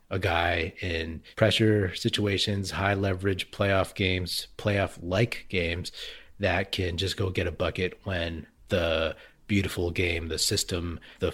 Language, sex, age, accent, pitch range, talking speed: English, male, 30-49, American, 85-105 Hz, 130 wpm